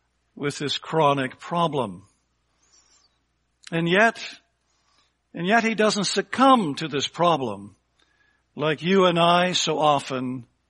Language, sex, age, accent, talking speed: English, male, 60-79, American, 110 wpm